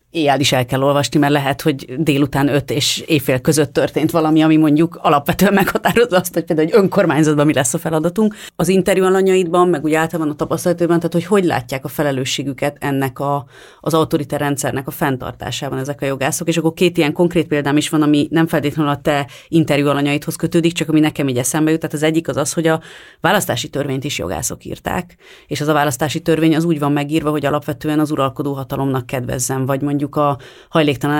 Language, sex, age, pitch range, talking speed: Hungarian, female, 30-49, 140-160 Hz, 195 wpm